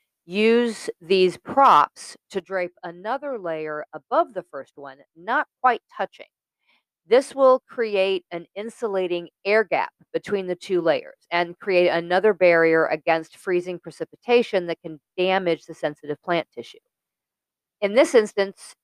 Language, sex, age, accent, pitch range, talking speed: English, female, 40-59, American, 160-210 Hz, 135 wpm